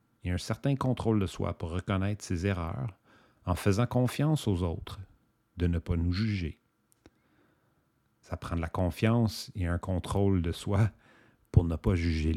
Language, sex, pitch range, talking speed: English, male, 95-120 Hz, 165 wpm